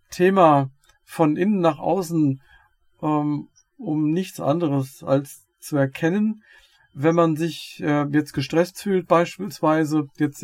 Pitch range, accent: 145-180 Hz, German